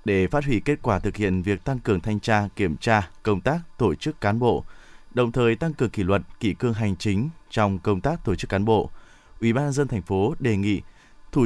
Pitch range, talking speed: 105-140 Hz, 235 wpm